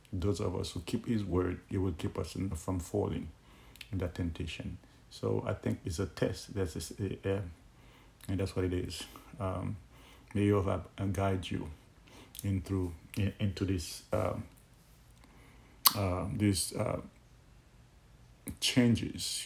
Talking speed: 145 wpm